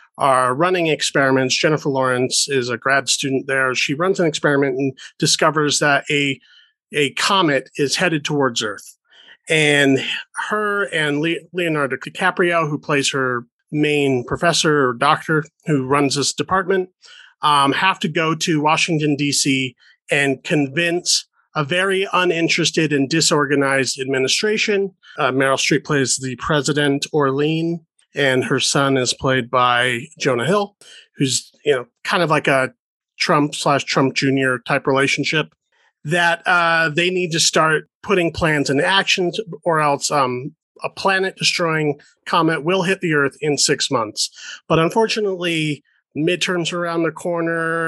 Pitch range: 140-175 Hz